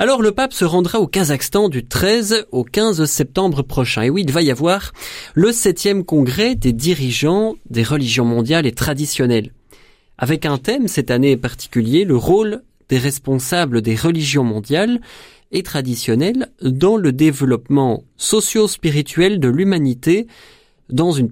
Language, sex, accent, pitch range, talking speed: French, male, French, 125-185 Hz, 145 wpm